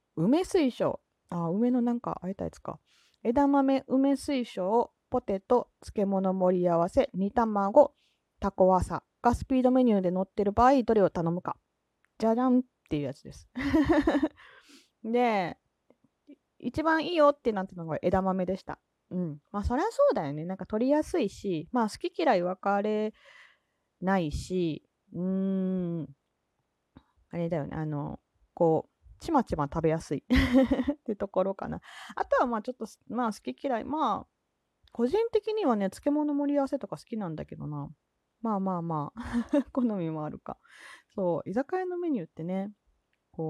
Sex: female